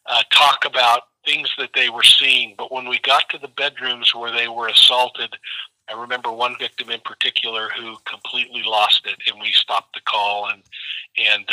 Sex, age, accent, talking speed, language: male, 40-59, American, 185 wpm, English